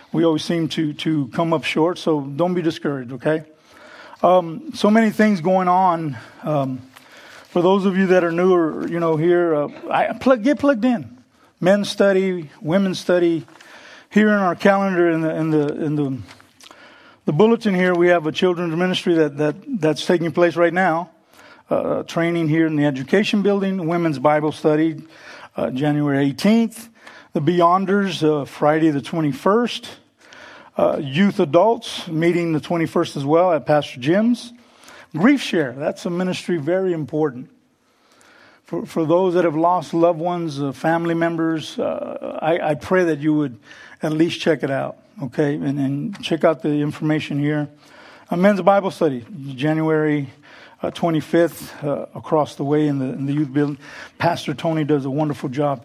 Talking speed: 175 wpm